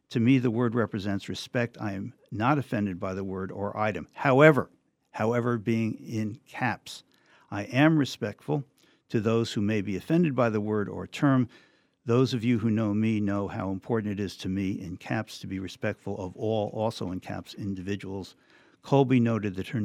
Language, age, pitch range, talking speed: English, 60-79, 100-135 Hz, 185 wpm